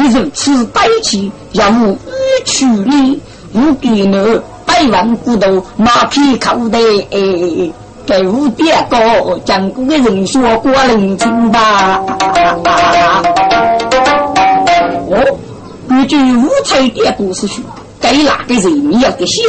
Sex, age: female, 50-69